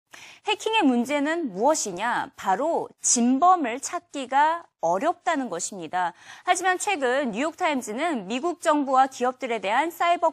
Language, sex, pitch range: Korean, female, 240-345 Hz